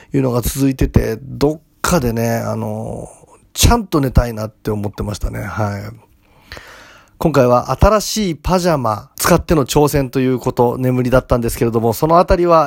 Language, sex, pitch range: Japanese, male, 120-165 Hz